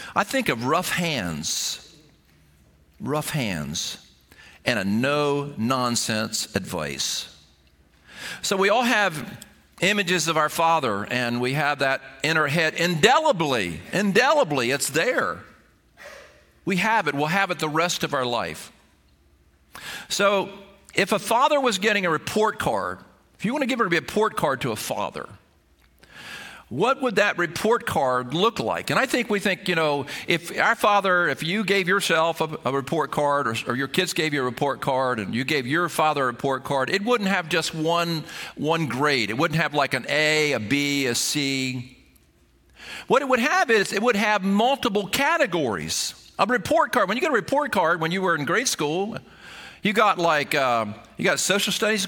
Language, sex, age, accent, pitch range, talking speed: English, male, 50-69, American, 135-210 Hz, 180 wpm